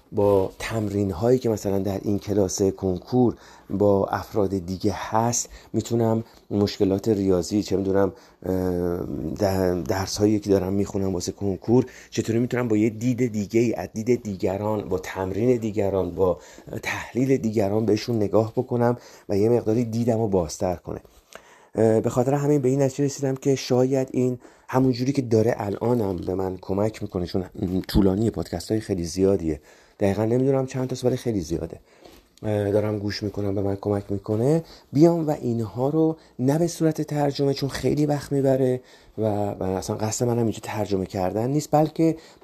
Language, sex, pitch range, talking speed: Persian, male, 100-125 Hz, 155 wpm